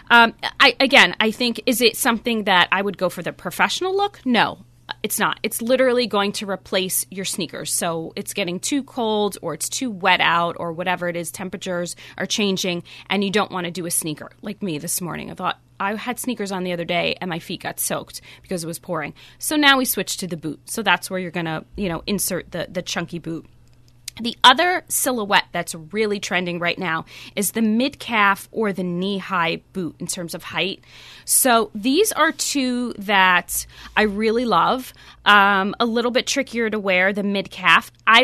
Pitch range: 175-230 Hz